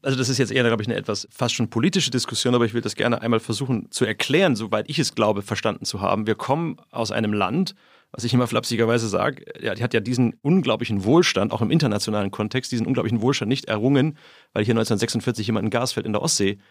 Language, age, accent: German, 40-59, German